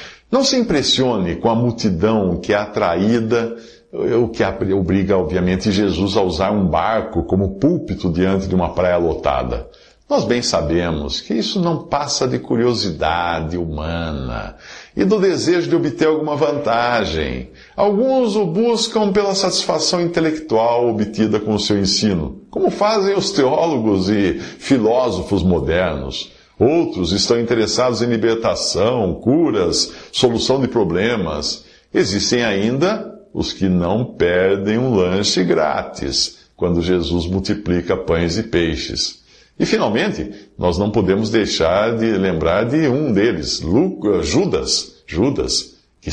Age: 50-69